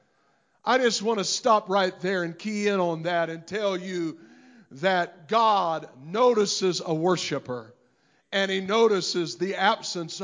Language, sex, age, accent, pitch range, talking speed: English, male, 50-69, American, 175-215 Hz, 145 wpm